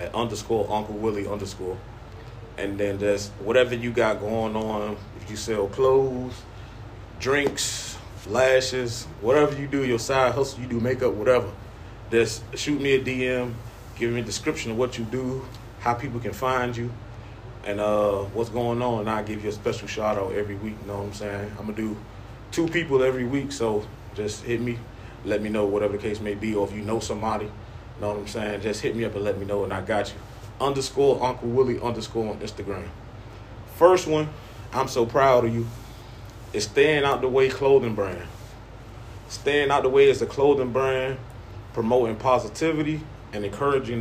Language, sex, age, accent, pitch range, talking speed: English, male, 30-49, American, 105-125 Hz, 190 wpm